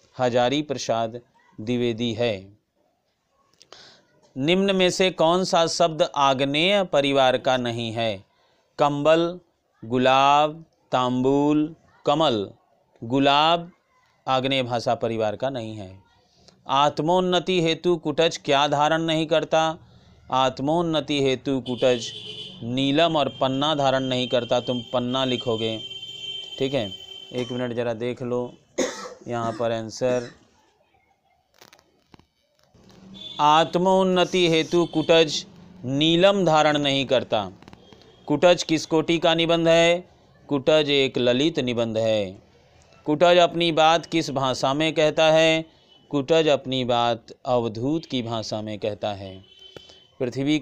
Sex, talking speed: male, 110 wpm